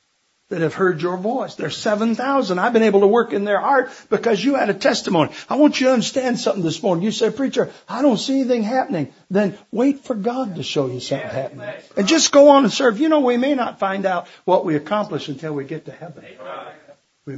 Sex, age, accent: male, 60-79, American